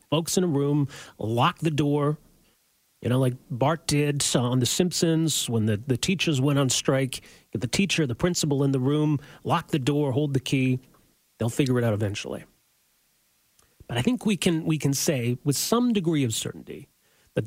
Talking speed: 190 wpm